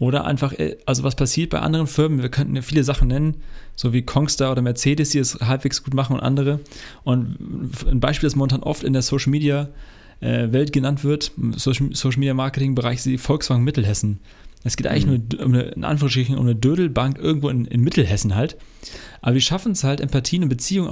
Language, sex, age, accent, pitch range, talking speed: German, male, 30-49, German, 125-155 Hz, 185 wpm